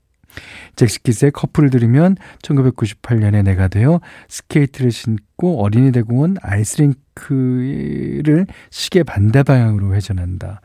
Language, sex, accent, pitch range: Korean, male, native, 95-135 Hz